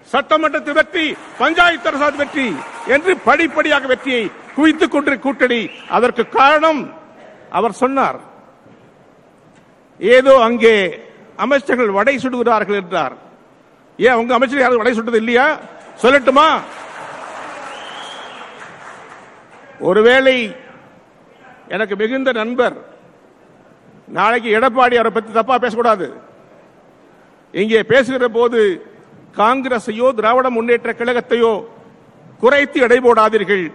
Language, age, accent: Tamil, 50-69, native